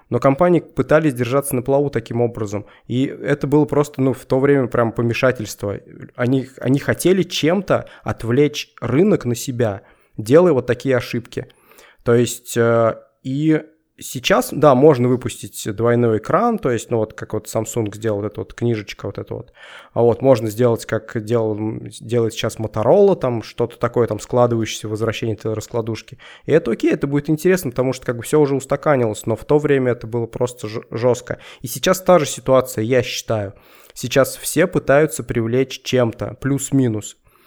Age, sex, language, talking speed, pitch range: 20-39, male, Russian, 170 wpm, 115-145 Hz